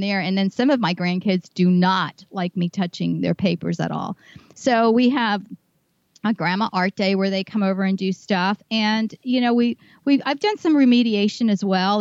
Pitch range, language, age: 185-225 Hz, English, 40-59